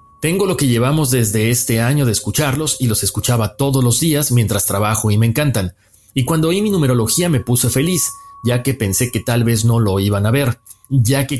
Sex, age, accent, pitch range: male, 40-59, Mexican, 110-140 Hz